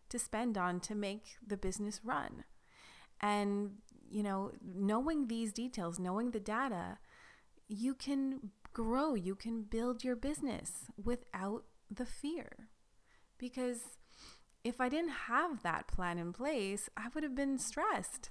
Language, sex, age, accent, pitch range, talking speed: English, female, 30-49, American, 190-245 Hz, 140 wpm